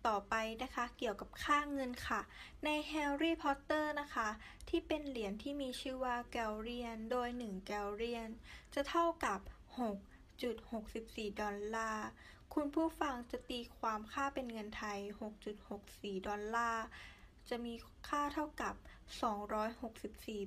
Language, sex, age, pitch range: Thai, female, 10-29, 205-260 Hz